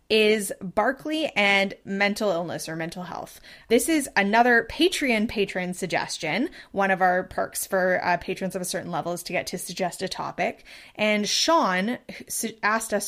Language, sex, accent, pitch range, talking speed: English, female, American, 185-245 Hz, 165 wpm